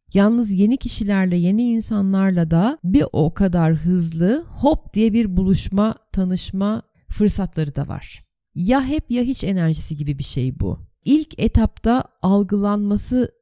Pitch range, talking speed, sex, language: 165-215 Hz, 135 wpm, female, Turkish